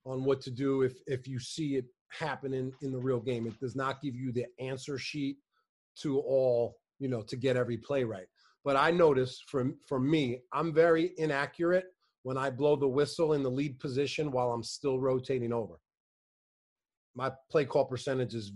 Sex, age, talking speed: male, 30-49, 190 wpm